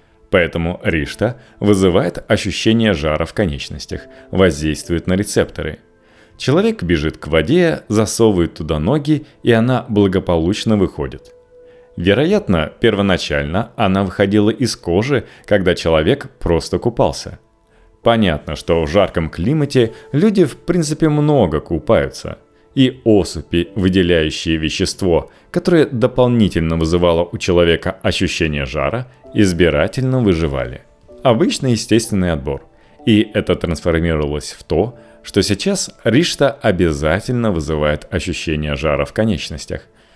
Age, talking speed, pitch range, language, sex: 30-49, 105 wpm, 85-120 Hz, Russian, male